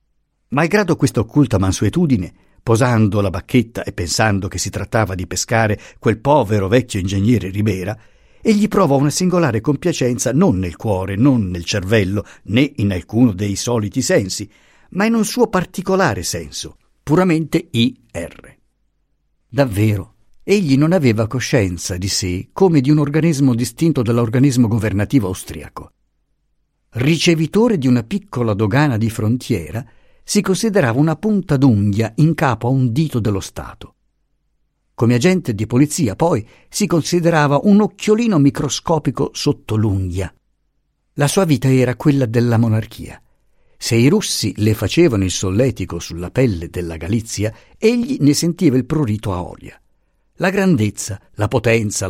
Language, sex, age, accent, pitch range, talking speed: Italian, male, 50-69, native, 105-150 Hz, 135 wpm